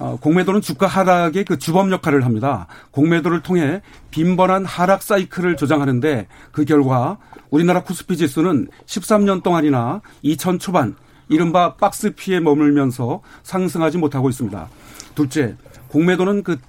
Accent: native